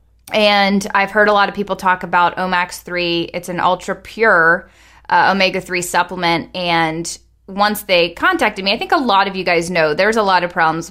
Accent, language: American, English